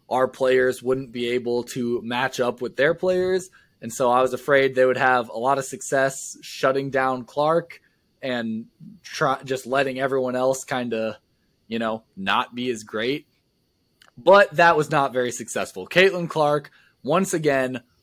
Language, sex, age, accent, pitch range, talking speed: English, male, 20-39, American, 125-170 Hz, 165 wpm